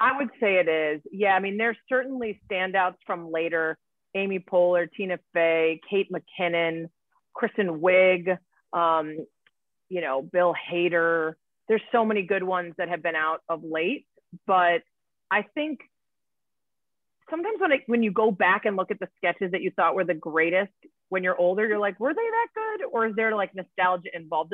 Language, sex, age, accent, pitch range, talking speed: English, female, 30-49, American, 165-205 Hz, 175 wpm